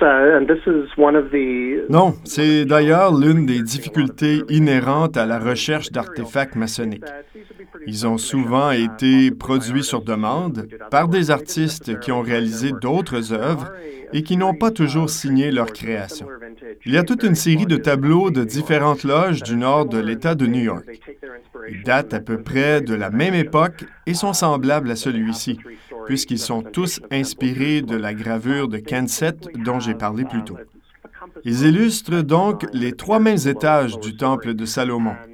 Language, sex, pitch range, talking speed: French, male, 115-155 Hz, 155 wpm